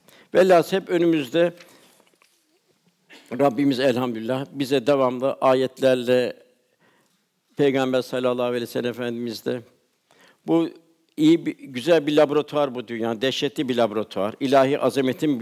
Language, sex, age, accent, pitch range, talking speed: Turkish, male, 60-79, native, 130-160 Hz, 100 wpm